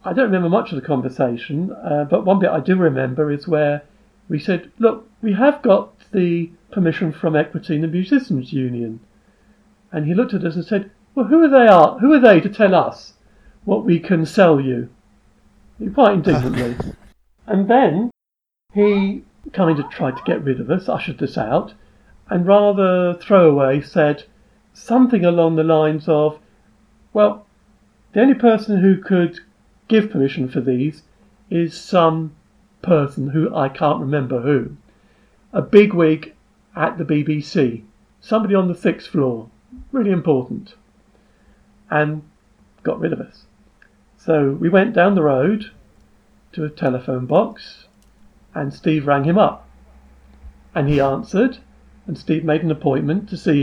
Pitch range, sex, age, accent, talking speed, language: 145-200 Hz, male, 50-69, British, 155 wpm, English